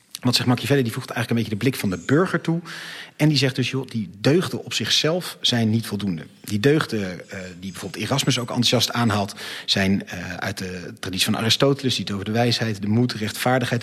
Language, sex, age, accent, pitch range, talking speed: Dutch, male, 40-59, Dutch, 105-125 Hz, 220 wpm